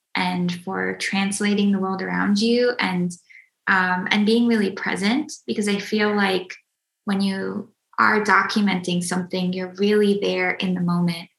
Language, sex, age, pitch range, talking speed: English, female, 20-39, 185-215 Hz, 150 wpm